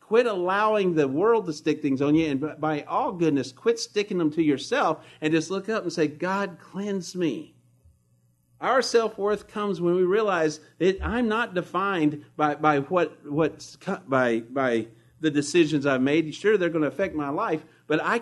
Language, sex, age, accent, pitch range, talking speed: English, male, 50-69, American, 140-185 Hz, 170 wpm